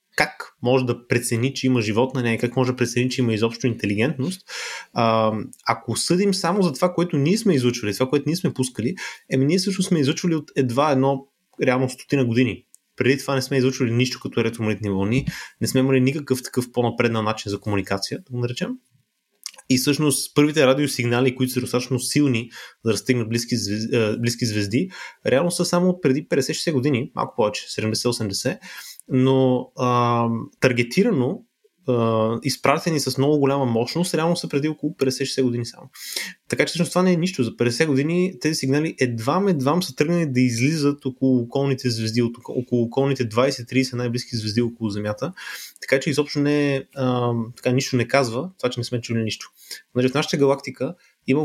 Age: 20-39